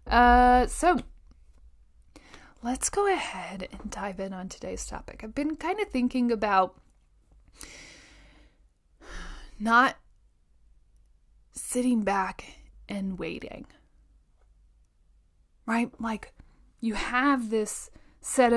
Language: English